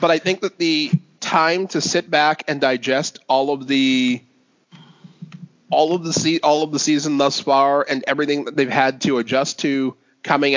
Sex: male